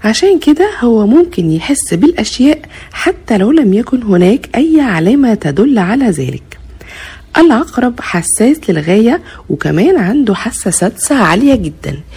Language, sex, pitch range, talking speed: Arabic, female, 180-280 Hz, 125 wpm